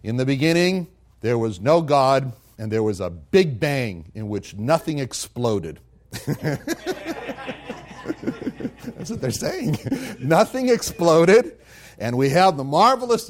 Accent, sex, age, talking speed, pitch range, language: American, male, 60-79, 125 wpm, 125-205 Hz, English